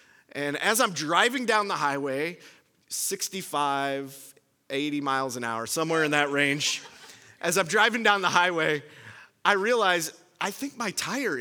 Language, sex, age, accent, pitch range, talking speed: English, male, 30-49, American, 140-165 Hz, 145 wpm